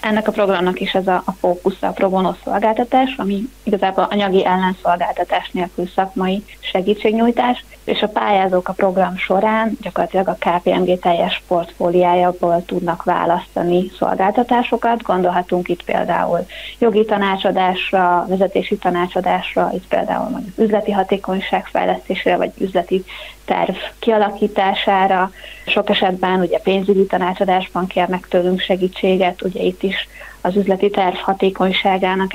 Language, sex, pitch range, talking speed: Hungarian, female, 185-205 Hz, 120 wpm